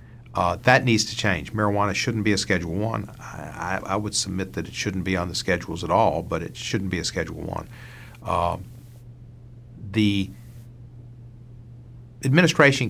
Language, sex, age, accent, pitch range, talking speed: English, male, 50-69, American, 90-120 Hz, 155 wpm